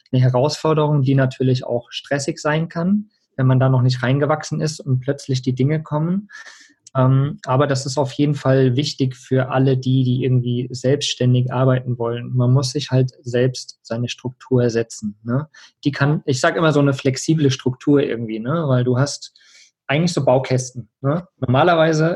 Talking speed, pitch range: 165 wpm, 125-150 Hz